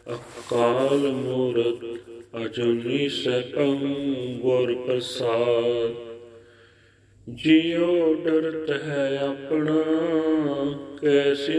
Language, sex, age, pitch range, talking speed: Punjabi, male, 40-59, 120-155 Hz, 55 wpm